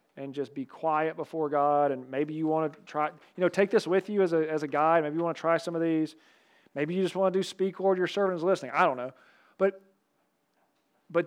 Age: 40-59